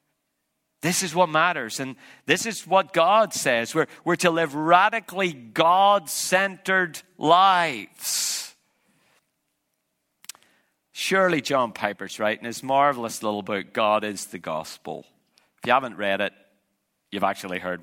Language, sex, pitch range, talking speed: English, male, 155-200 Hz, 130 wpm